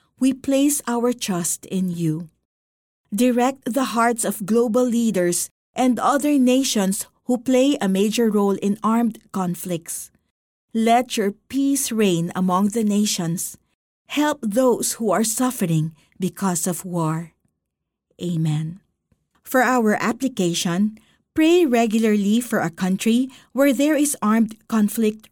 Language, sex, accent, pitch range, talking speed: Filipino, female, native, 175-250 Hz, 125 wpm